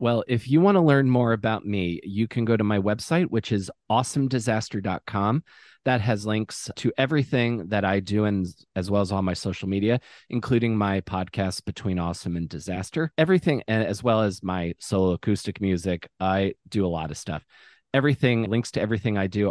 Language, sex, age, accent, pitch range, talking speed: English, male, 30-49, American, 100-130 Hz, 190 wpm